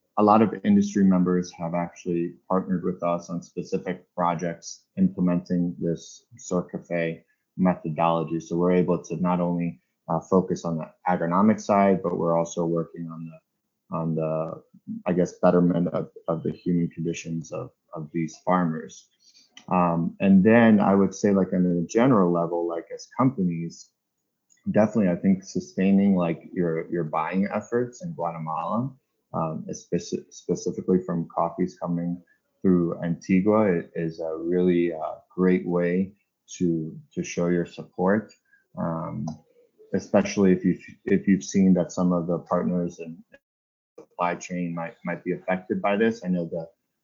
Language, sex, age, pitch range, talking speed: English, male, 30-49, 85-95 Hz, 150 wpm